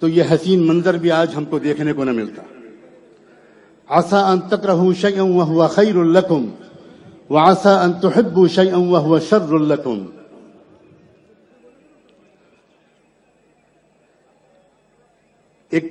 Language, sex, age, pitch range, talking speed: English, male, 60-79, 170-210 Hz, 95 wpm